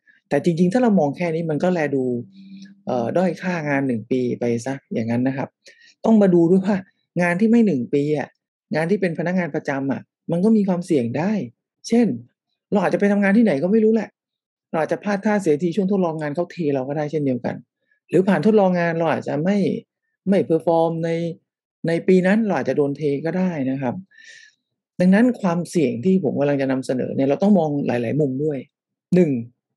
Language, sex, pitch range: English, male, 145-200 Hz